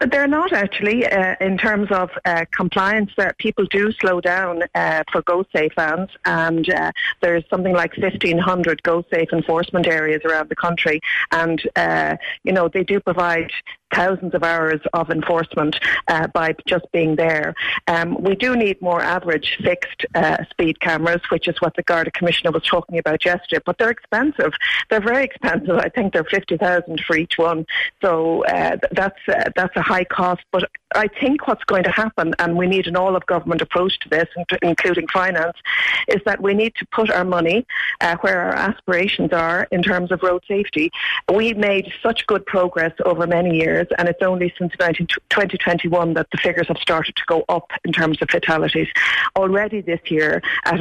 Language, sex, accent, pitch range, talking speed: English, female, Irish, 170-195 Hz, 190 wpm